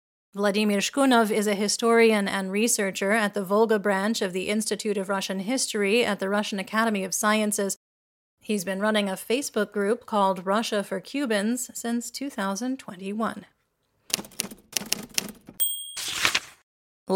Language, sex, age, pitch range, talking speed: English, female, 30-49, 200-235 Hz, 120 wpm